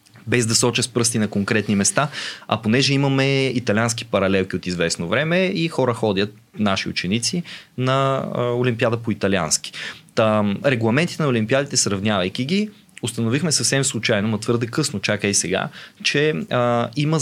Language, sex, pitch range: Bulgarian, male, 110-140 Hz